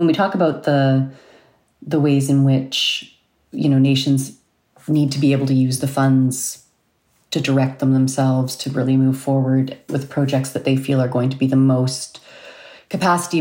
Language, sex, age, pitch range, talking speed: English, female, 30-49, 135-155 Hz, 180 wpm